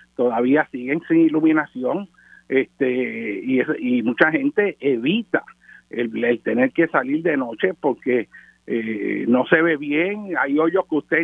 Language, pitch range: Spanish, 140-195 Hz